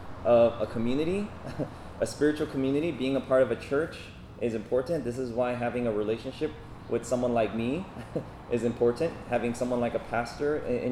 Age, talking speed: 20-39, 175 wpm